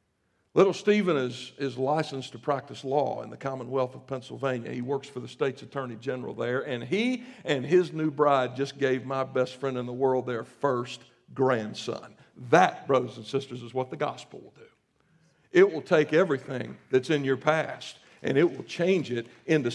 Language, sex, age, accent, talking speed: English, male, 60-79, American, 190 wpm